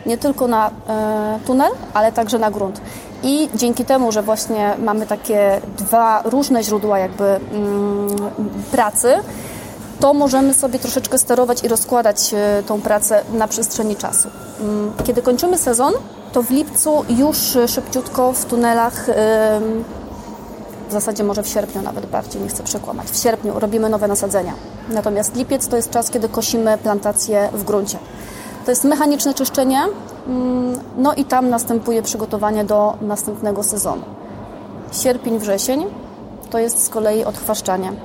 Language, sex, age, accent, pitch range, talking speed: Polish, female, 30-49, native, 210-250 Hz, 135 wpm